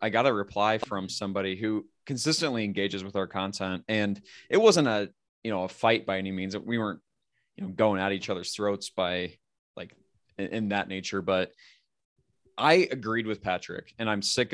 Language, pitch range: English, 95-110 Hz